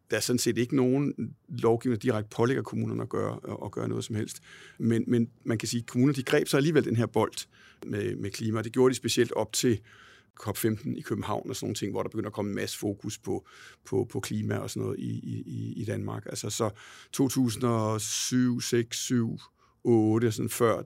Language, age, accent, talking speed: Danish, 60-79, native, 205 wpm